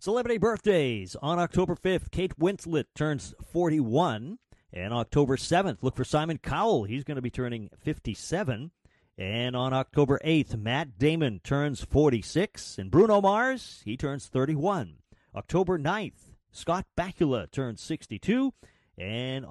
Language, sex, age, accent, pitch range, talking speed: English, male, 40-59, American, 115-175 Hz, 130 wpm